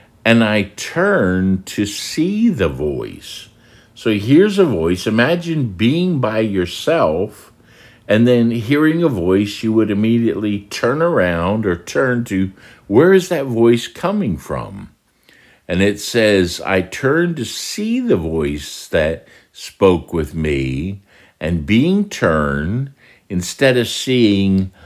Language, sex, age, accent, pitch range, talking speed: English, male, 60-79, American, 85-115 Hz, 130 wpm